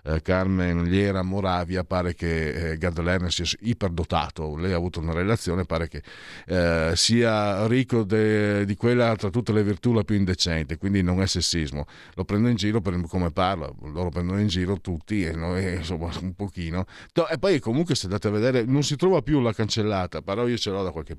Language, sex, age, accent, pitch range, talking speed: Italian, male, 50-69, native, 85-115 Hz, 195 wpm